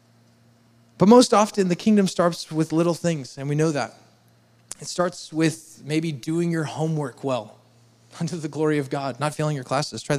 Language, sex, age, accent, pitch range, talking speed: English, male, 20-39, American, 125-170 Hz, 185 wpm